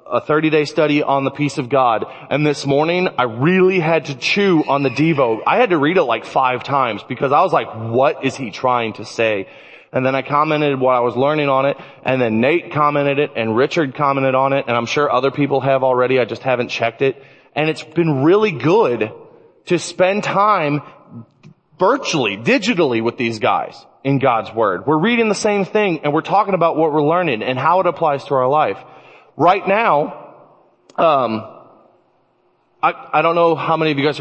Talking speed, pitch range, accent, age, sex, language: 205 wpm, 135-175 Hz, American, 30-49, male, English